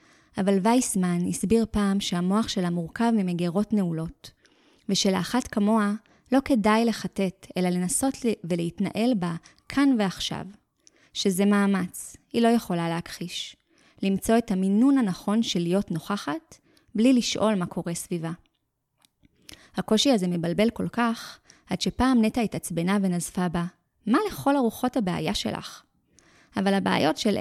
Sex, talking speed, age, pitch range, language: female, 125 wpm, 20-39, 175-225 Hz, Hebrew